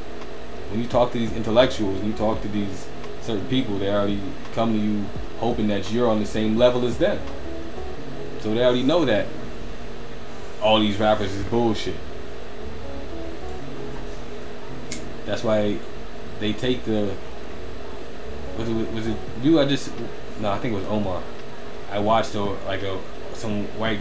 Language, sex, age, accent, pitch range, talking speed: English, male, 20-39, American, 95-110 Hz, 155 wpm